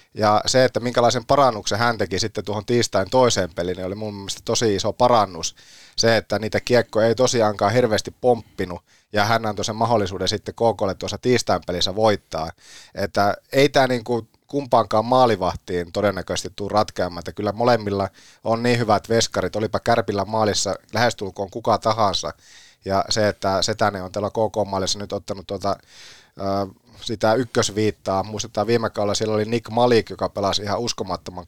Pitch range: 100-120 Hz